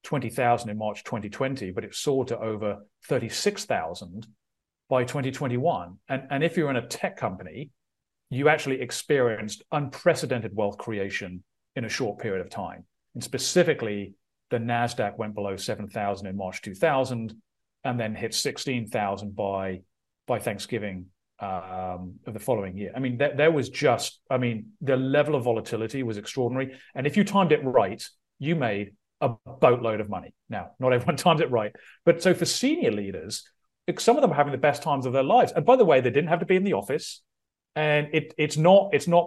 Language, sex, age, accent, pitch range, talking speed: English, male, 40-59, British, 105-150 Hz, 185 wpm